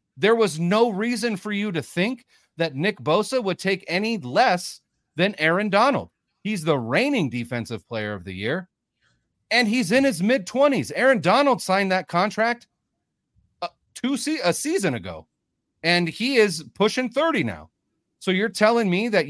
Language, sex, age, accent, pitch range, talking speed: English, male, 40-59, American, 150-210 Hz, 165 wpm